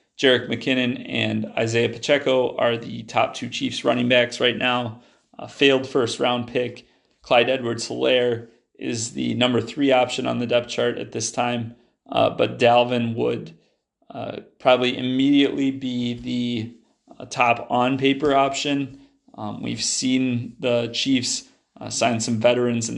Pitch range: 120-135 Hz